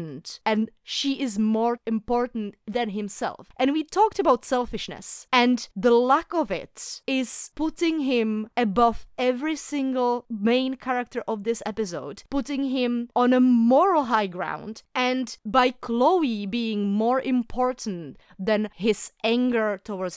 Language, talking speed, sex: English, 135 wpm, female